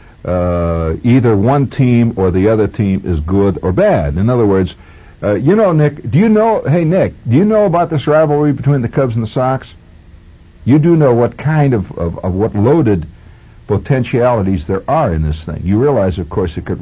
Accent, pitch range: American, 90-145 Hz